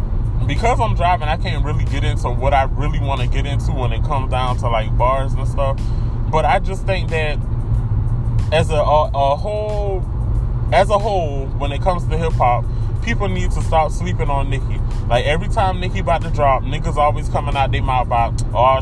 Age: 20-39